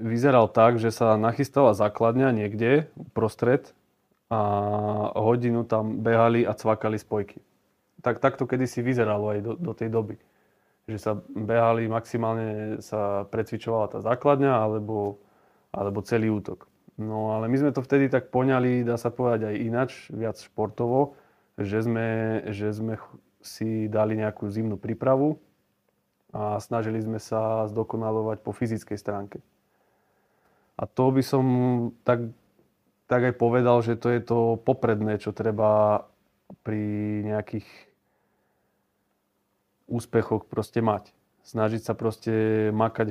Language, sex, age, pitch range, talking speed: Slovak, male, 20-39, 105-120 Hz, 130 wpm